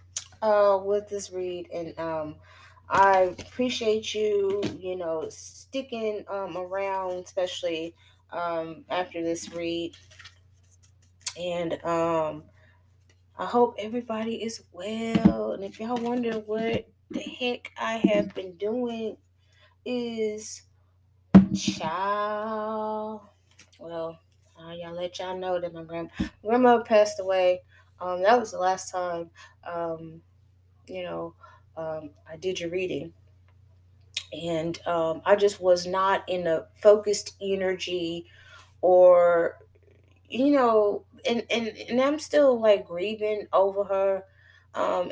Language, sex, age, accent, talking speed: English, female, 20-39, American, 115 wpm